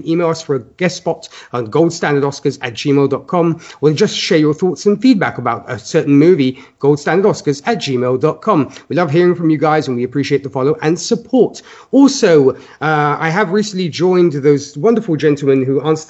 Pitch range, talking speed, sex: 140-195 Hz, 180 wpm, male